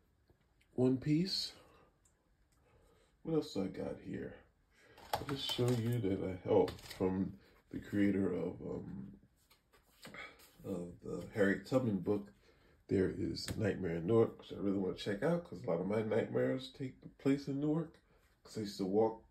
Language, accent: English, American